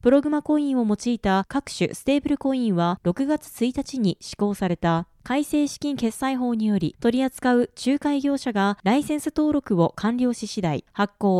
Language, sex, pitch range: Japanese, female, 195-280 Hz